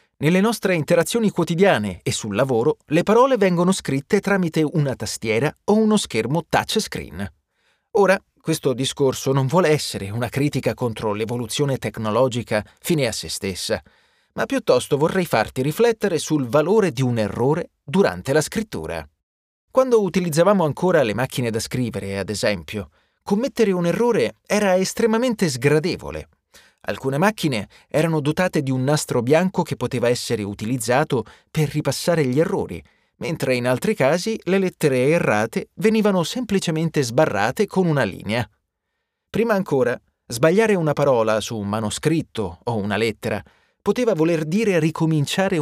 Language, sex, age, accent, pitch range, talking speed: Italian, male, 30-49, native, 120-190 Hz, 140 wpm